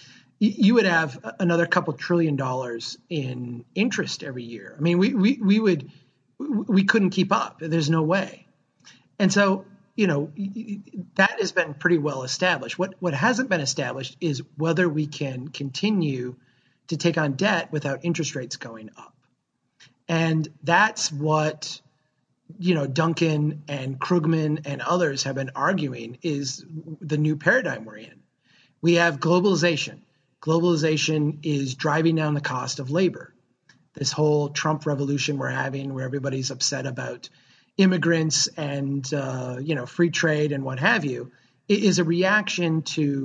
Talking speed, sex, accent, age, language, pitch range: 150 wpm, male, American, 30-49, English, 140-175 Hz